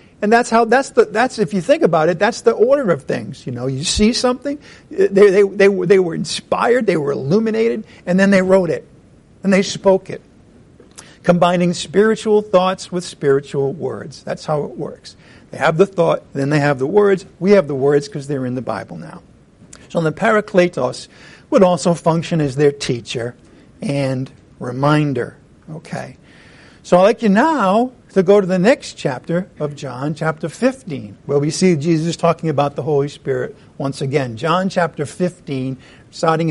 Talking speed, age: 180 wpm, 50-69